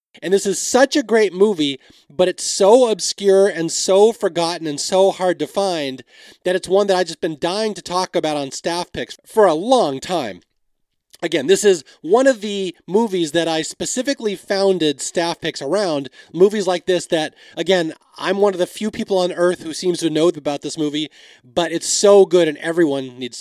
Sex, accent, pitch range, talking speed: male, American, 155-200 Hz, 200 wpm